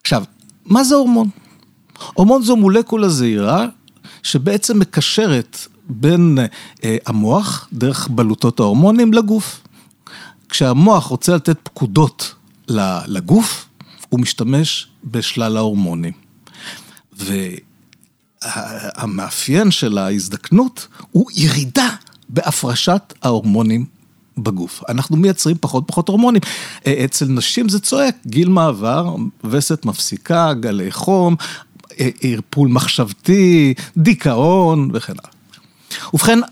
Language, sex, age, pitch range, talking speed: Hebrew, male, 50-69, 115-180 Hz, 90 wpm